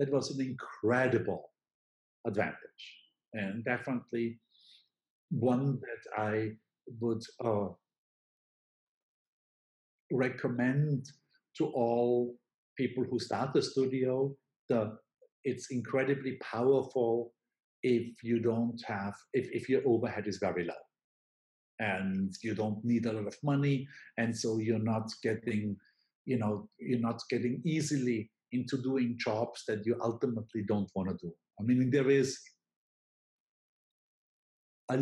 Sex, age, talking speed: male, 50-69, 115 wpm